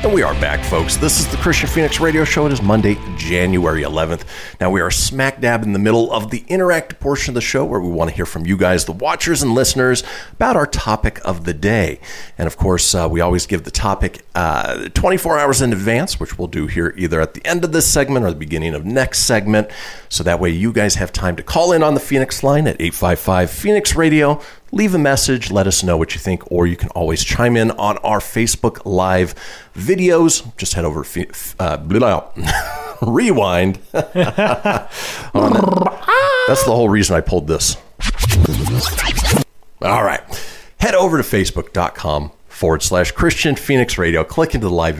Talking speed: 195 wpm